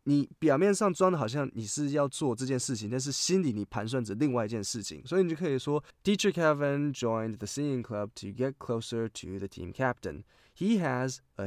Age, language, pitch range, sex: 20-39, Chinese, 105-145 Hz, male